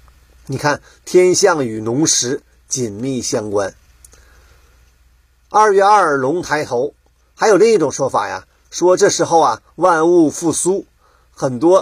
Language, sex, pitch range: Chinese, male, 105-175 Hz